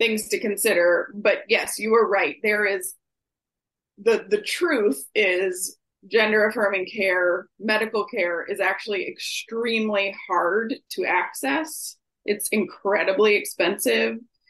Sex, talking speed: female, 115 wpm